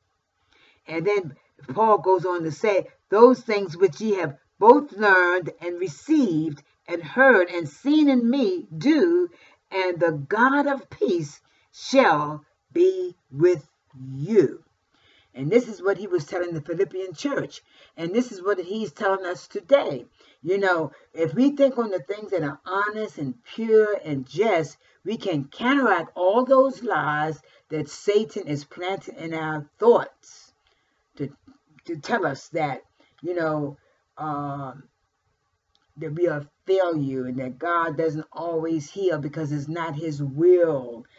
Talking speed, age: 145 wpm, 50-69